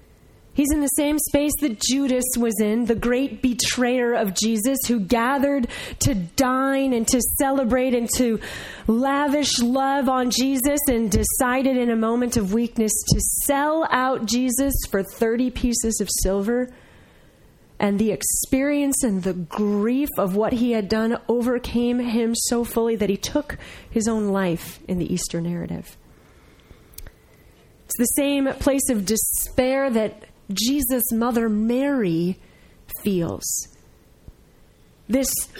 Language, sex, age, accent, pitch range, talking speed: English, female, 30-49, American, 225-270 Hz, 135 wpm